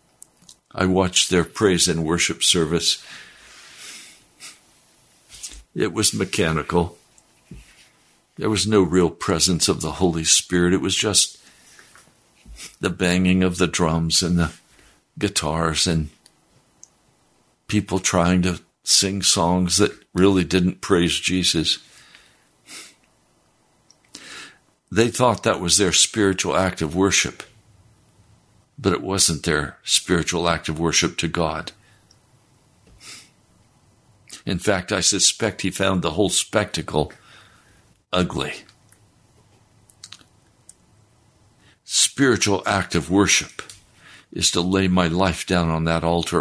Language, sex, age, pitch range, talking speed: English, male, 60-79, 85-105 Hz, 105 wpm